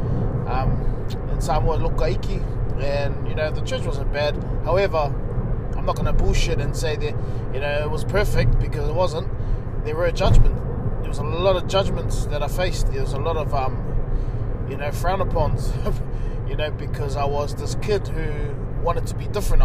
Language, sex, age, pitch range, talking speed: English, male, 20-39, 115-135 Hz, 190 wpm